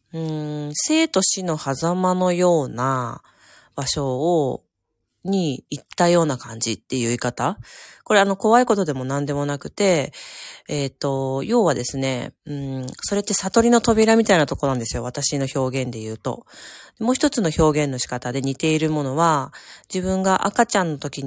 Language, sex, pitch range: Japanese, female, 135-195 Hz